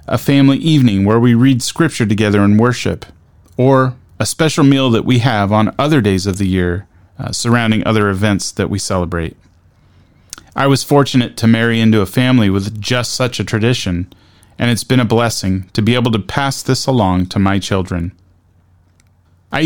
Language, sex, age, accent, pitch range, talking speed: English, male, 30-49, American, 95-130 Hz, 180 wpm